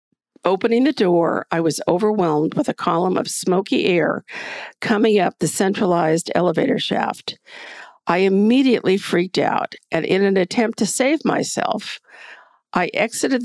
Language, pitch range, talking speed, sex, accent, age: English, 175-235 Hz, 140 wpm, female, American, 50-69